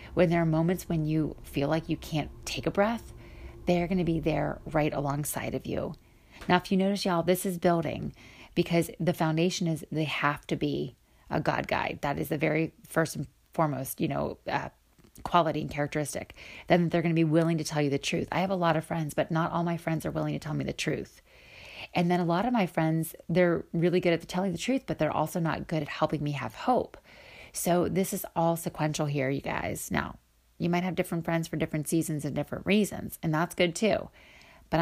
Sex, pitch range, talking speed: female, 155-180 Hz, 225 wpm